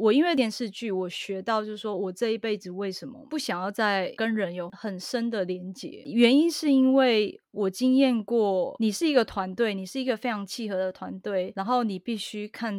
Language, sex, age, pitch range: Chinese, female, 20-39, 190-240 Hz